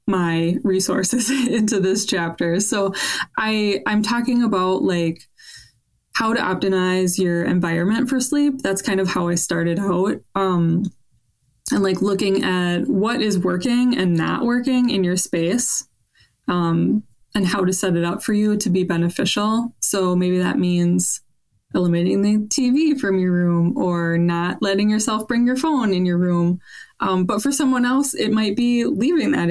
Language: English